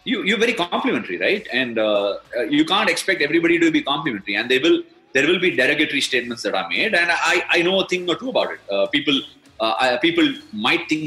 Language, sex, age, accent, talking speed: Tamil, male, 30-49, native, 230 wpm